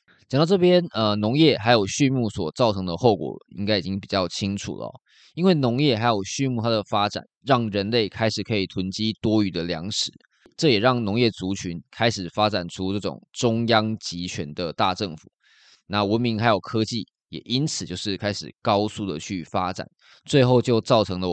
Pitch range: 95-120 Hz